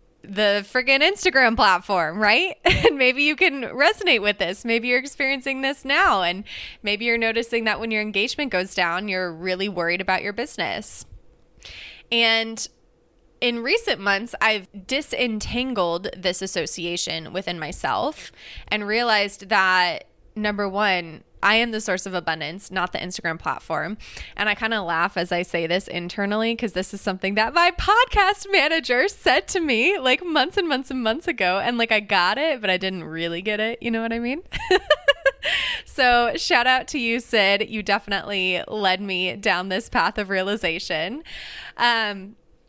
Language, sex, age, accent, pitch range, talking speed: English, female, 20-39, American, 190-255 Hz, 165 wpm